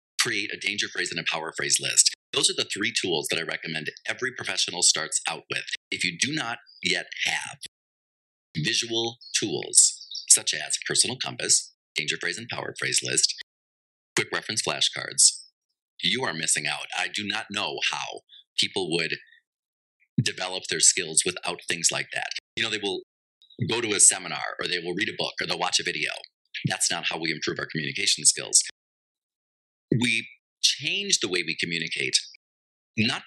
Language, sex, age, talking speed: English, male, 30-49, 170 wpm